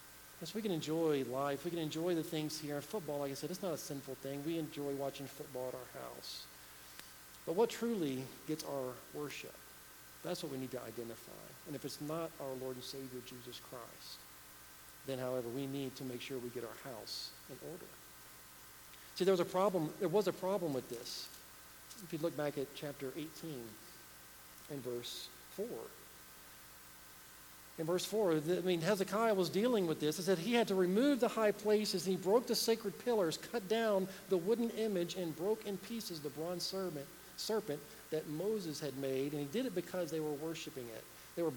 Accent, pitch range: American, 135-195 Hz